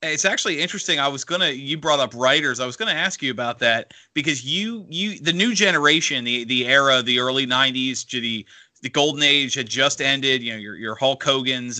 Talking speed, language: 210 wpm, English